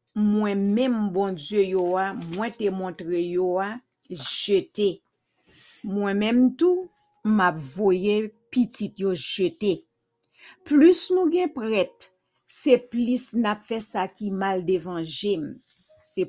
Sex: female